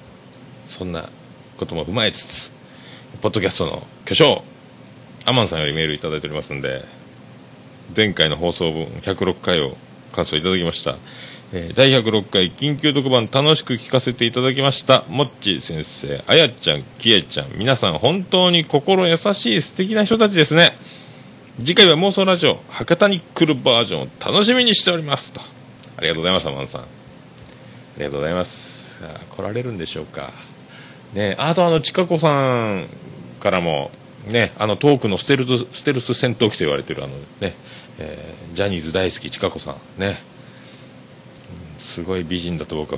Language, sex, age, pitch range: Japanese, male, 40-59, 85-140 Hz